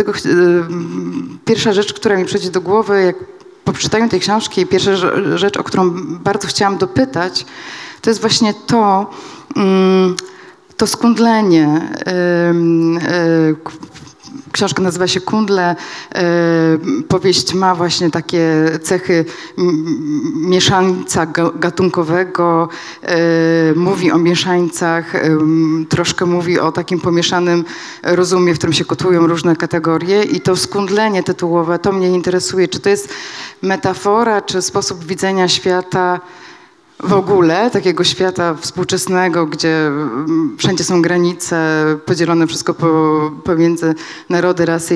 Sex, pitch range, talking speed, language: female, 165-195 Hz, 110 wpm, Polish